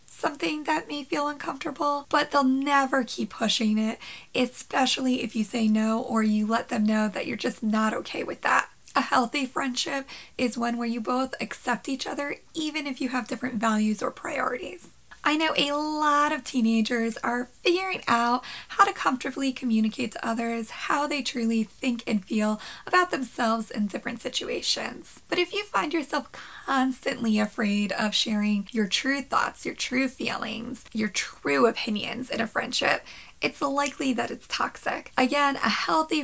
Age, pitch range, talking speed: 20-39, 220-275 Hz, 170 wpm